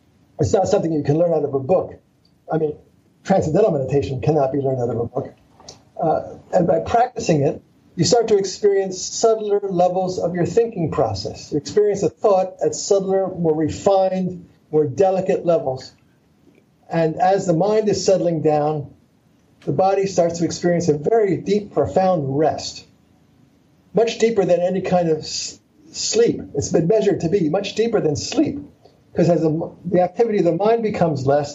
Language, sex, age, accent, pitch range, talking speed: English, male, 50-69, American, 155-205 Hz, 170 wpm